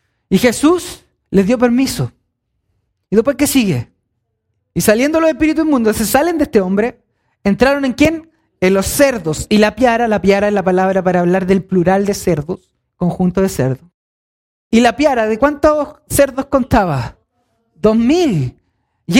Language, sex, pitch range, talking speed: Spanish, male, 190-265 Hz, 165 wpm